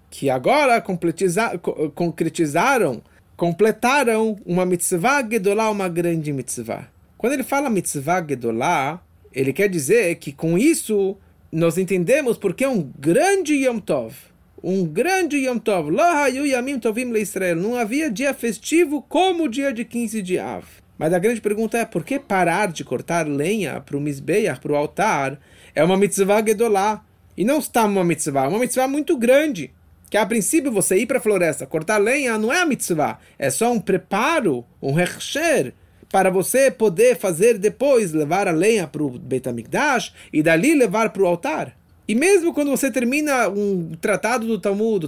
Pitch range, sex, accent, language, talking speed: 165-235 Hz, male, Brazilian, English, 160 wpm